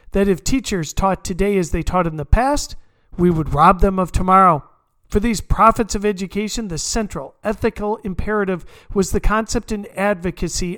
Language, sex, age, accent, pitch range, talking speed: English, male, 50-69, American, 165-210 Hz, 175 wpm